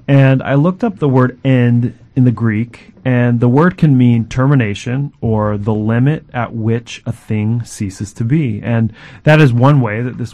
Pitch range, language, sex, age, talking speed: 115-135 Hz, English, male, 30-49, 190 wpm